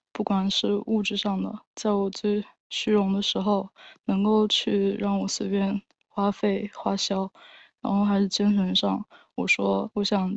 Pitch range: 195-215 Hz